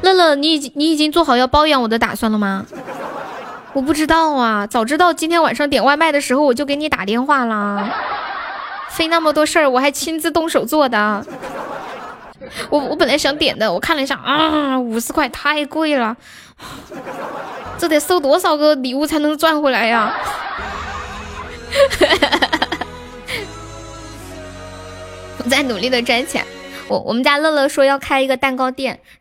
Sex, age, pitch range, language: female, 10-29, 235-300 Hz, Chinese